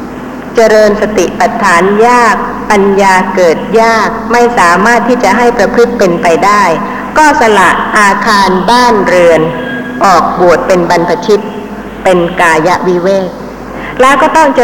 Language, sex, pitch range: Thai, female, 210-250 Hz